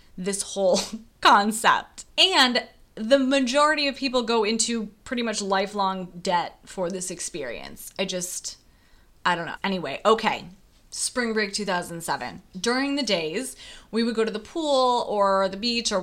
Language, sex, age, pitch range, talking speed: English, female, 20-39, 185-225 Hz, 150 wpm